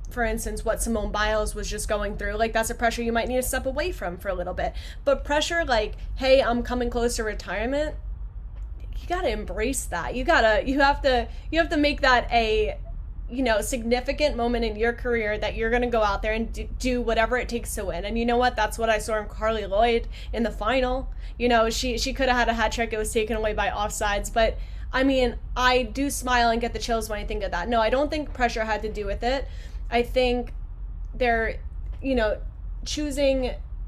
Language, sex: English, female